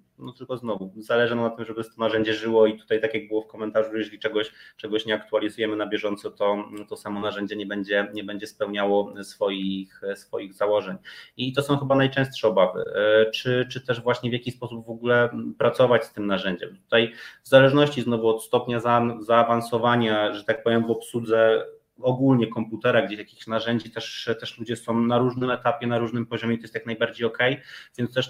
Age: 20-39